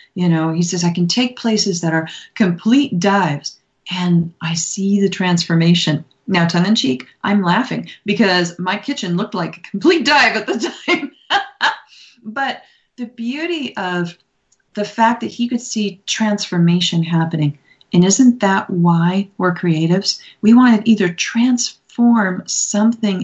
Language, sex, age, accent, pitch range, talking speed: English, female, 40-59, American, 170-210 Hz, 150 wpm